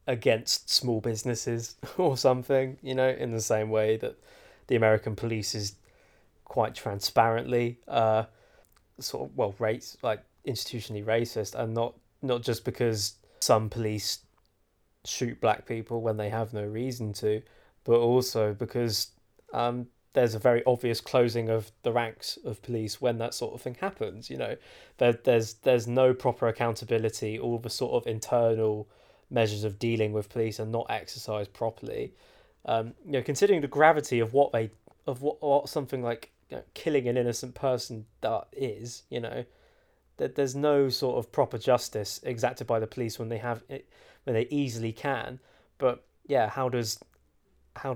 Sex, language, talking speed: male, English, 165 wpm